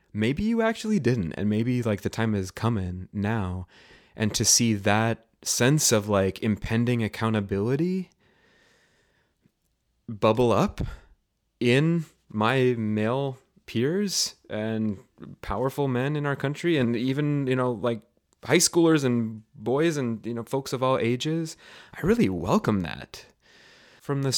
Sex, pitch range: male, 110-140 Hz